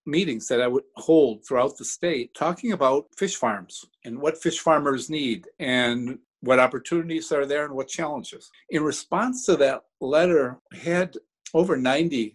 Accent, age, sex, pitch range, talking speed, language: American, 50-69, male, 130-165 Hz, 165 wpm, English